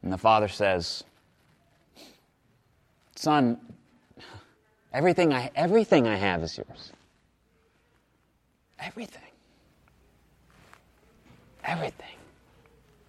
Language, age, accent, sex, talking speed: English, 30-49, American, male, 65 wpm